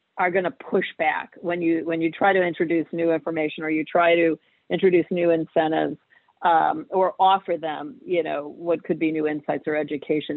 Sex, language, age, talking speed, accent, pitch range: female, English, 50-69, 195 wpm, American, 160-215 Hz